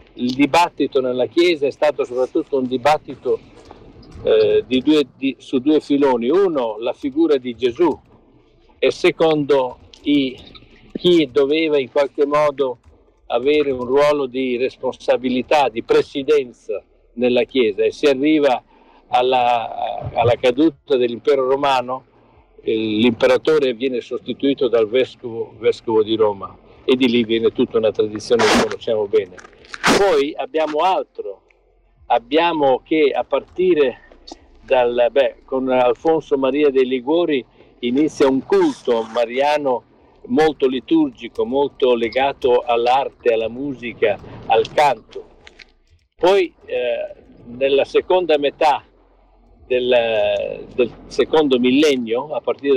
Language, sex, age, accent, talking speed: Italian, male, 50-69, native, 115 wpm